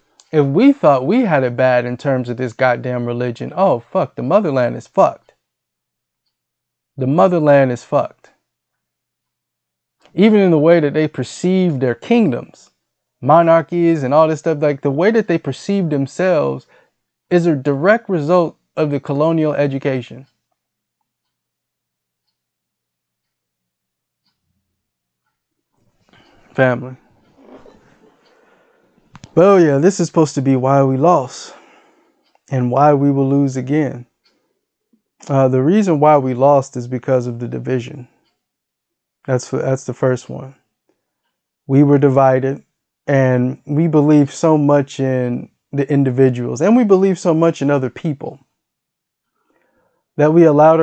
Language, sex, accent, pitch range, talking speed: English, male, American, 130-160 Hz, 125 wpm